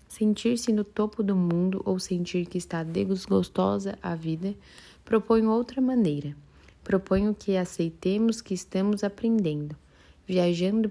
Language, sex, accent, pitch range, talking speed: Portuguese, female, Brazilian, 170-200 Hz, 120 wpm